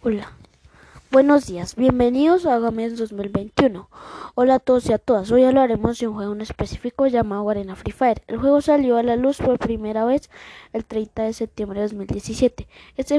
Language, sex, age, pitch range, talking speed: Spanish, female, 20-39, 215-260 Hz, 180 wpm